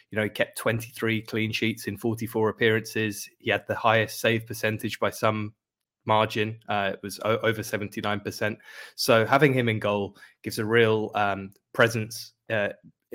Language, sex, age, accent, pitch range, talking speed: English, male, 20-39, British, 105-115 Hz, 165 wpm